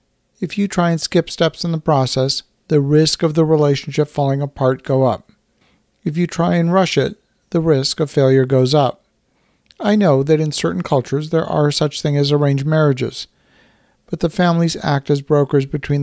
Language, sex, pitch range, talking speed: English, male, 140-170 Hz, 185 wpm